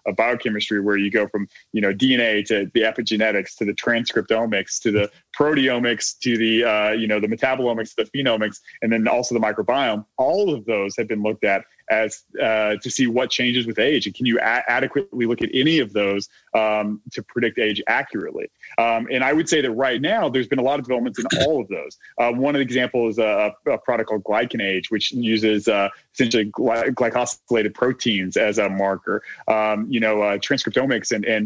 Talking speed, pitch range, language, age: 200 wpm, 110-130 Hz, English, 30-49